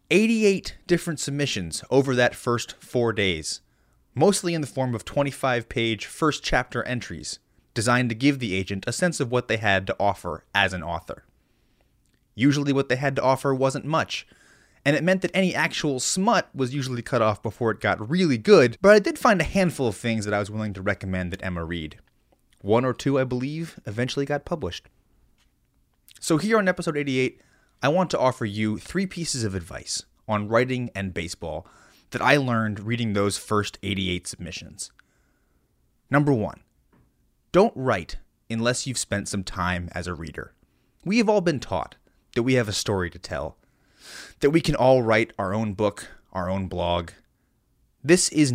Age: 30-49